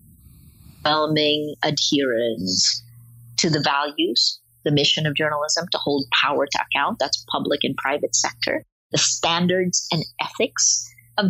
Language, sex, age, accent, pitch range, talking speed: English, female, 50-69, American, 140-190 Hz, 120 wpm